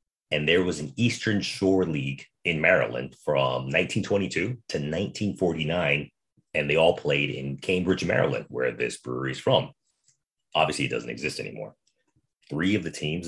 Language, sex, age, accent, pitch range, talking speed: English, male, 30-49, American, 70-100 Hz, 155 wpm